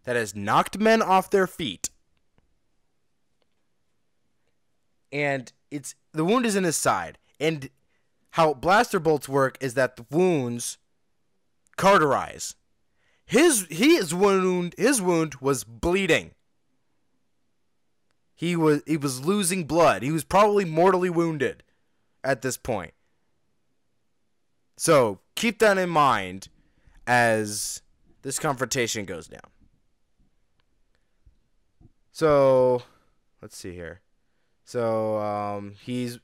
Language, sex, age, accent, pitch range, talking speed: English, male, 20-39, American, 115-160 Hz, 105 wpm